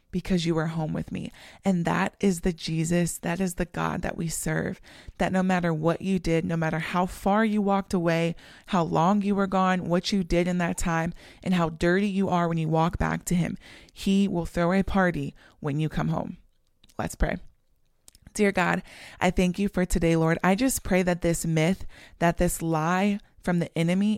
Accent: American